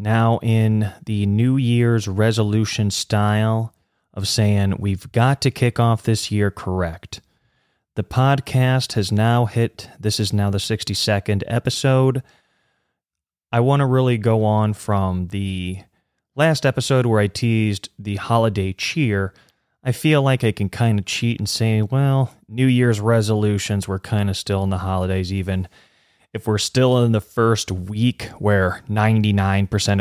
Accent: American